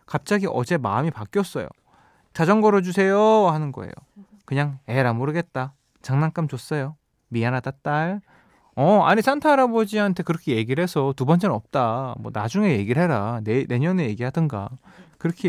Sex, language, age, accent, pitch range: male, Korean, 20-39, native, 115-180 Hz